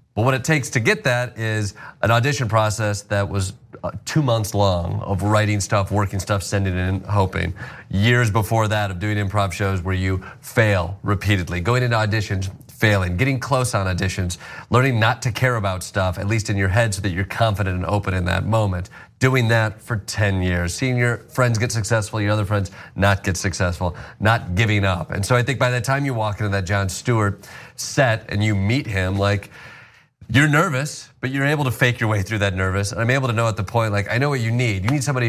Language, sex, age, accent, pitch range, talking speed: English, male, 30-49, American, 100-120 Hz, 220 wpm